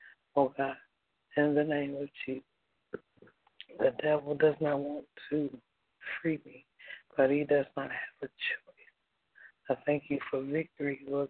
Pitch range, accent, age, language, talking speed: 140-150 Hz, American, 60-79, English, 150 wpm